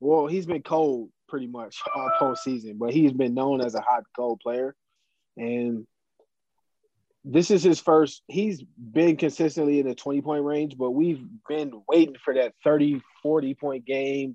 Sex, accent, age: male, American, 20-39